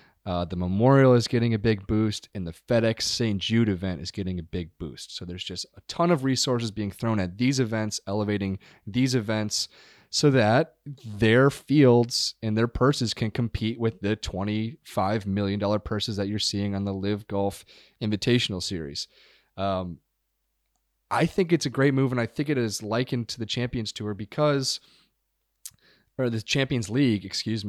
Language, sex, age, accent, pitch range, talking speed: English, male, 30-49, American, 105-130 Hz, 175 wpm